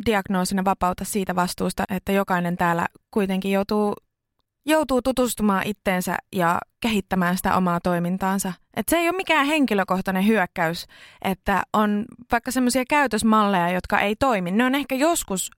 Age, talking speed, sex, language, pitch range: 20-39, 140 wpm, female, Finnish, 180-240 Hz